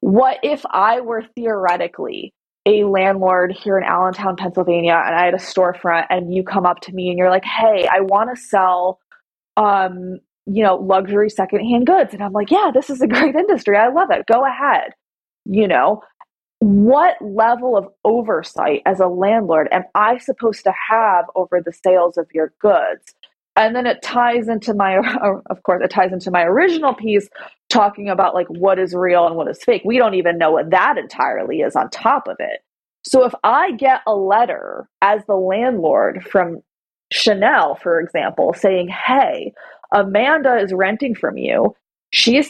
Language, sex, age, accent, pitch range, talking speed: English, female, 20-39, American, 185-240 Hz, 180 wpm